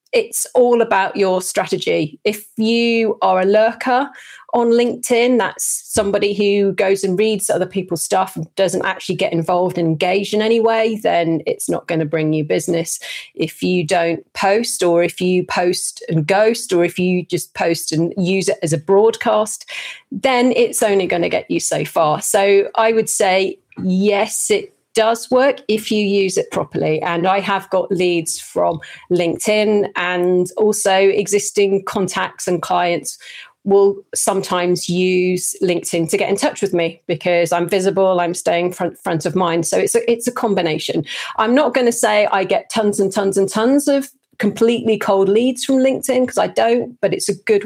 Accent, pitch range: British, 180-220 Hz